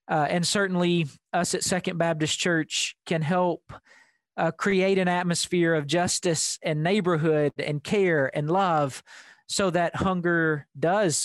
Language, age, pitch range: English, 40-59, 155-180 Hz